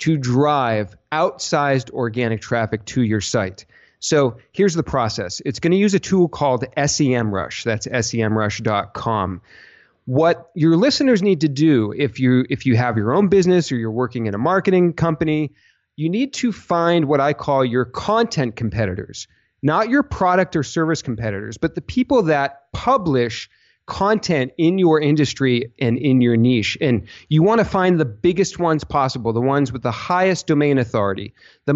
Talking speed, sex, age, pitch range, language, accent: 165 wpm, male, 40-59, 120-170 Hz, English, American